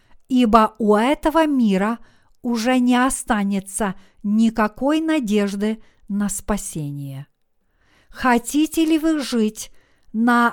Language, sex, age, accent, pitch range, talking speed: Russian, female, 50-69, native, 215-265 Hz, 90 wpm